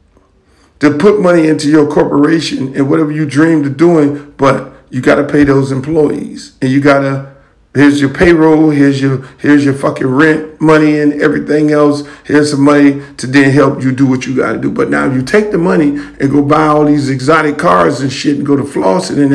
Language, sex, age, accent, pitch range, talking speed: English, male, 50-69, American, 145-210 Hz, 215 wpm